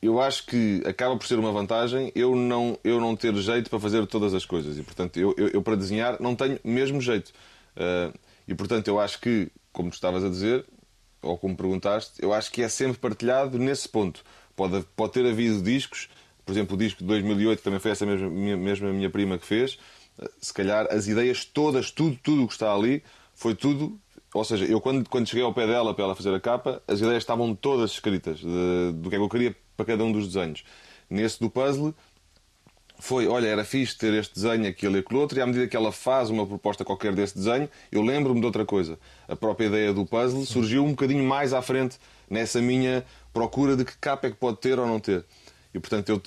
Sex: male